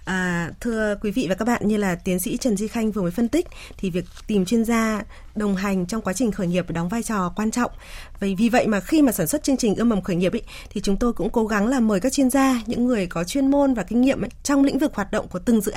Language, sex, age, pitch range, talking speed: Vietnamese, female, 20-39, 210-285 Hz, 295 wpm